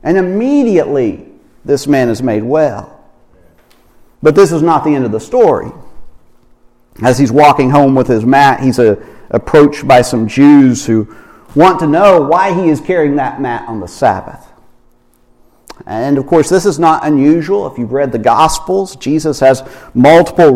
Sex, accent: male, American